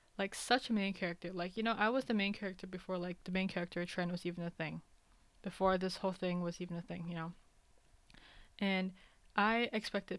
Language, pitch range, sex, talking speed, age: English, 180-215 Hz, female, 210 wpm, 20-39